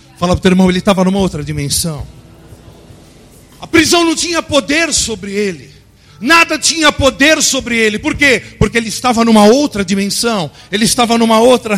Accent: Brazilian